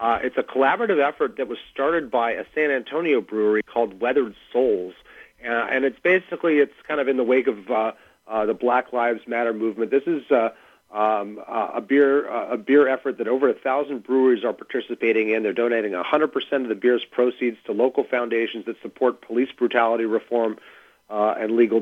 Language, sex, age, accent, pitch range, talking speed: English, male, 40-59, American, 110-135 Hz, 195 wpm